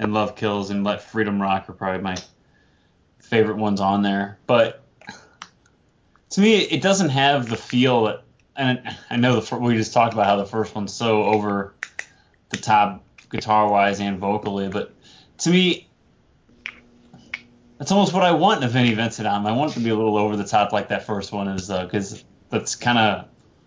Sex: male